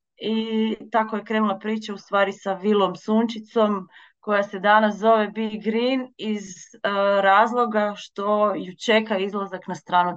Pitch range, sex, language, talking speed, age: 195-225 Hz, female, Croatian, 150 wpm, 30-49